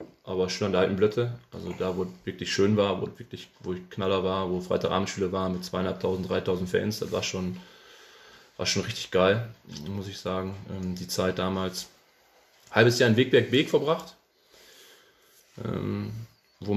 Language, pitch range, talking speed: German, 100-125 Hz, 170 wpm